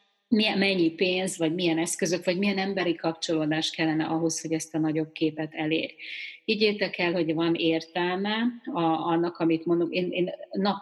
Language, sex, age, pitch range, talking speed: Hungarian, female, 30-49, 160-180 Hz, 155 wpm